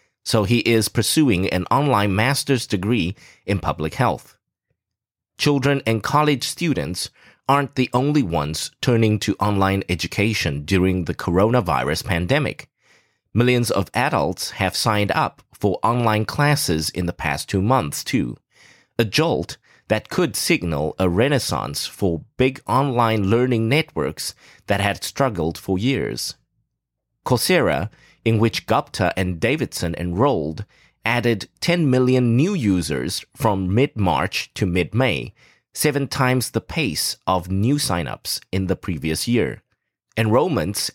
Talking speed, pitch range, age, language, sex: 125 wpm, 90-130 Hz, 30-49, English, male